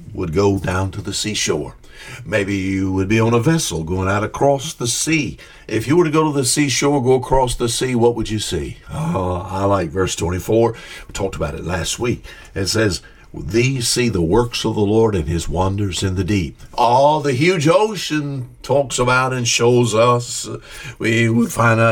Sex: male